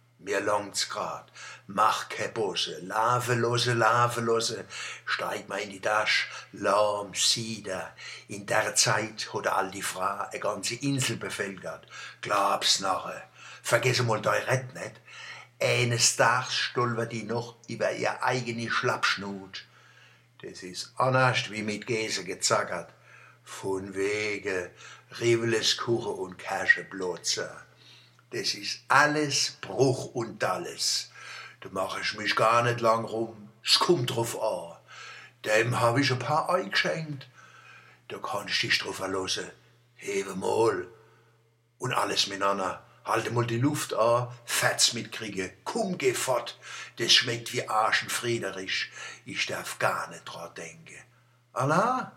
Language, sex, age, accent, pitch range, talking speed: German, male, 60-79, German, 110-135 Hz, 125 wpm